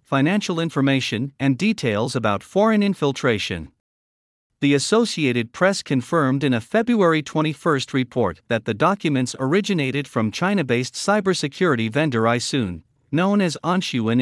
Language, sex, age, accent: English, male, 50-69, American